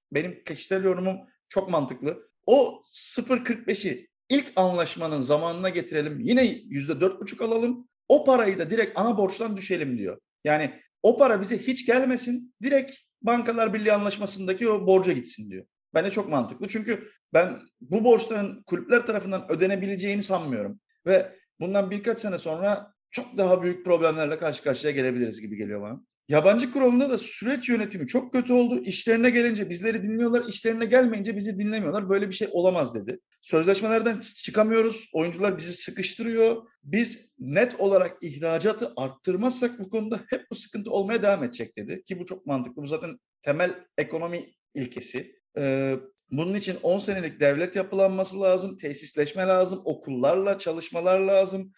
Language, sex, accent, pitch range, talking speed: Turkish, male, native, 175-225 Hz, 145 wpm